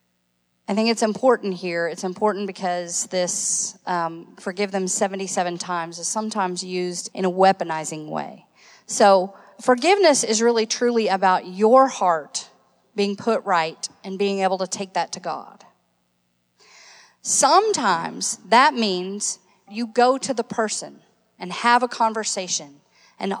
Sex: female